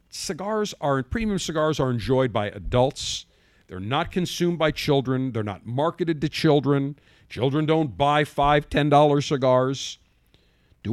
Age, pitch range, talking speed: 50-69, 120-165 Hz, 135 wpm